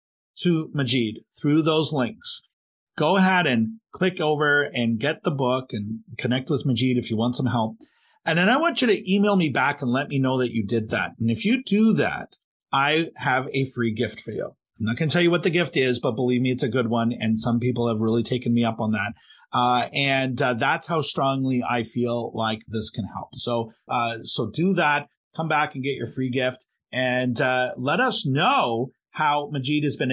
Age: 40-59